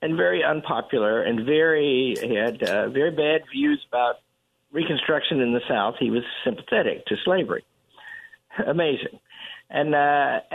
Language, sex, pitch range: English, male, 150-245 Hz